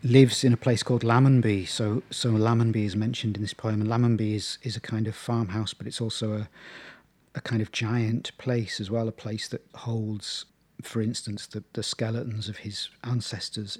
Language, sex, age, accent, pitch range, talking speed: English, male, 40-59, British, 115-150 Hz, 195 wpm